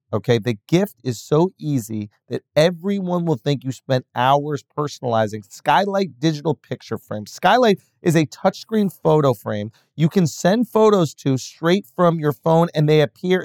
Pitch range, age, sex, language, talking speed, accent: 125-175 Hz, 30-49, male, English, 160 wpm, American